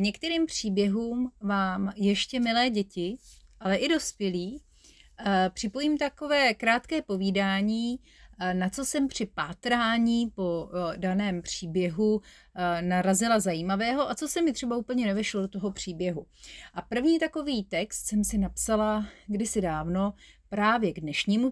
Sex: female